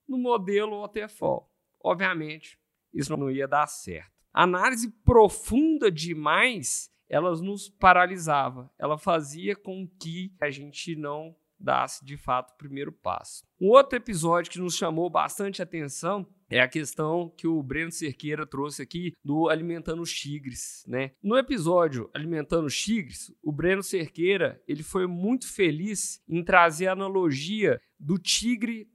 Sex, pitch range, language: male, 160-200 Hz, Portuguese